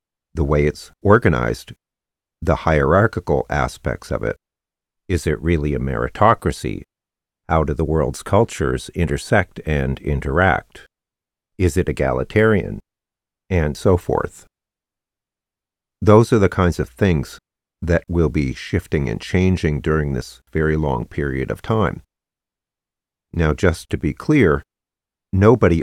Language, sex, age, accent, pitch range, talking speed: English, male, 50-69, American, 75-95 Hz, 125 wpm